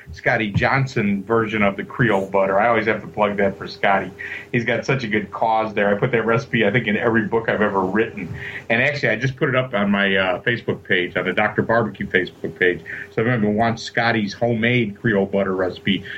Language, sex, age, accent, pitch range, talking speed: English, male, 50-69, American, 100-120 Hz, 225 wpm